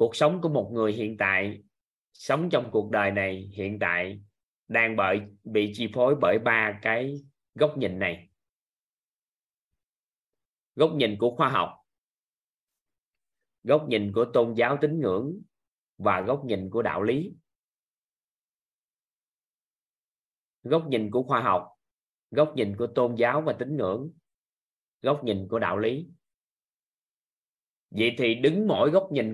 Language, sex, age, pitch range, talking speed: Vietnamese, male, 20-39, 105-140 Hz, 135 wpm